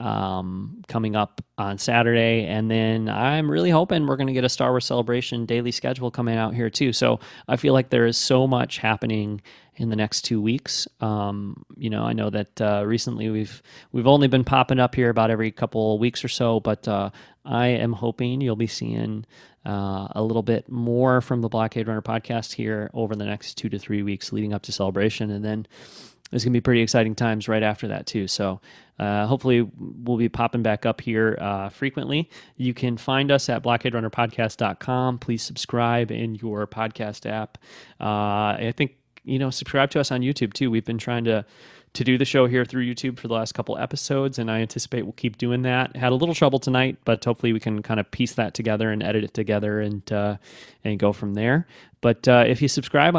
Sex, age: male, 30-49